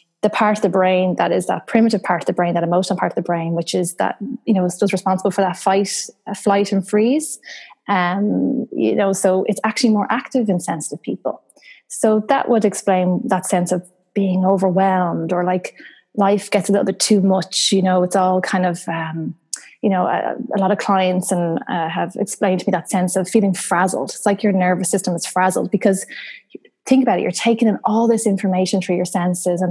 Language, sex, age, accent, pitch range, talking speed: English, female, 20-39, Irish, 180-205 Hz, 220 wpm